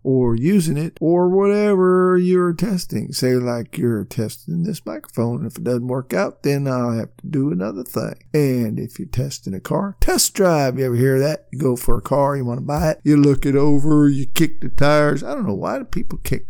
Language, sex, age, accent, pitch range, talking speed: English, male, 50-69, American, 125-180 Hz, 225 wpm